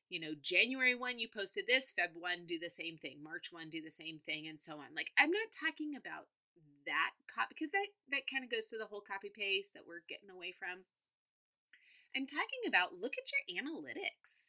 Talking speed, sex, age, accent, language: 215 wpm, female, 30-49, American, English